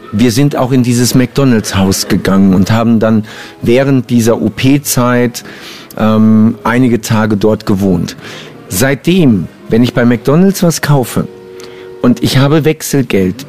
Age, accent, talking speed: 50-69, German, 130 wpm